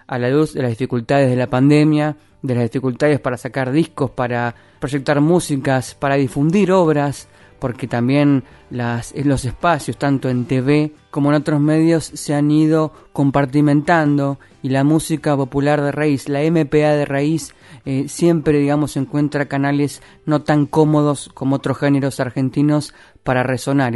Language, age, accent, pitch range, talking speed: Spanish, 20-39, Argentinian, 130-150 Hz, 155 wpm